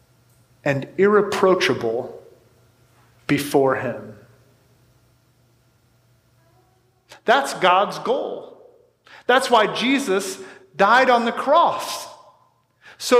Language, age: English, 40-59